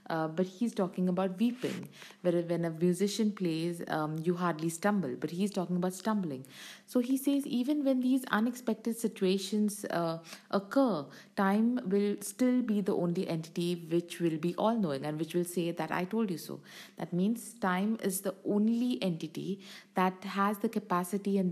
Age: 50-69